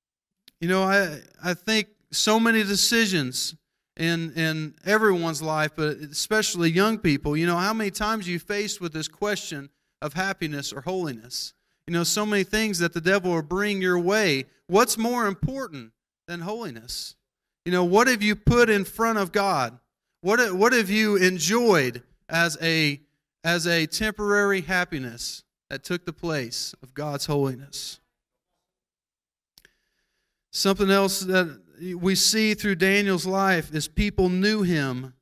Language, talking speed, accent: English, 150 wpm, American